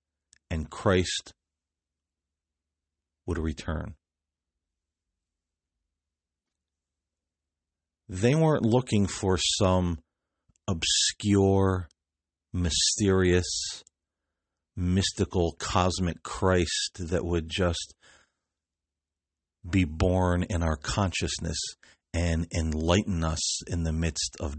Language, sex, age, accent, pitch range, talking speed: English, male, 50-69, American, 80-90 Hz, 70 wpm